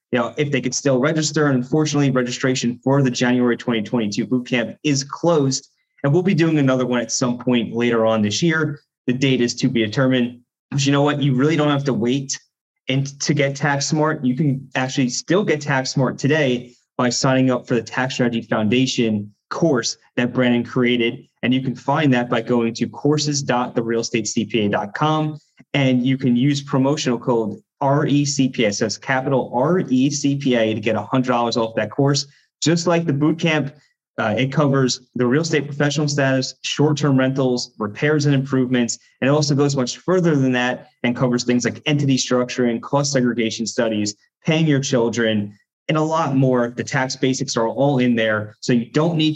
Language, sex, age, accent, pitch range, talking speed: English, male, 20-39, American, 120-140 Hz, 190 wpm